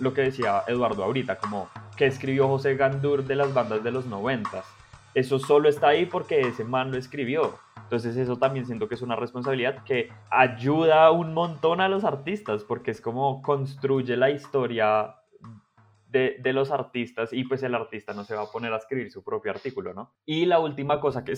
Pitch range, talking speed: 115-140 Hz, 195 wpm